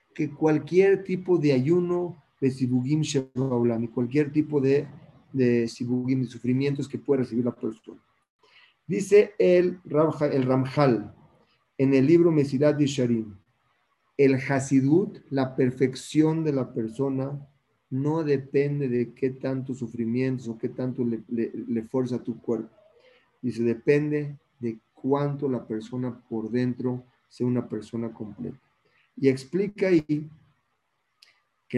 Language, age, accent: Spanish, 40-59, Mexican